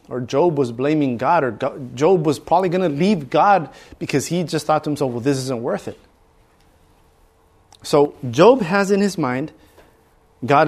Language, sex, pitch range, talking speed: English, male, 115-160 Hz, 175 wpm